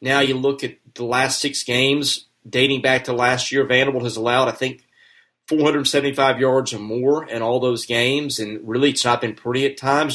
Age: 30-49